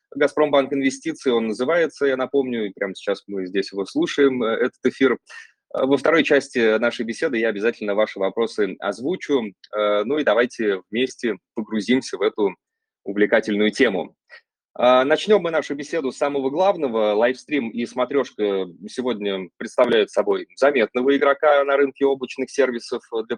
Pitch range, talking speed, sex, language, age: 110-145 Hz, 135 wpm, male, Russian, 20-39